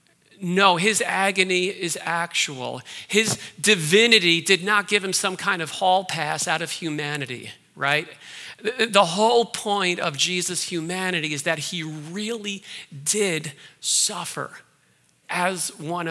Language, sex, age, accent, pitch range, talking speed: English, male, 40-59, American, 155-195 Hz, 125 wpm